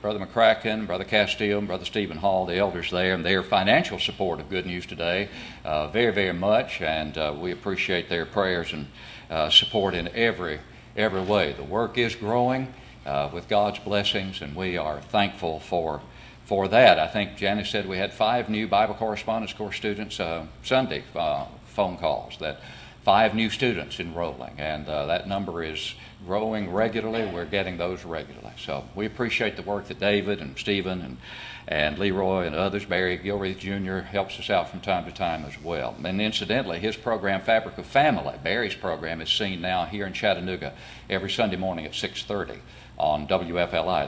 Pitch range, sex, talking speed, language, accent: 90-115 Hz, male, 180 wpm, English, American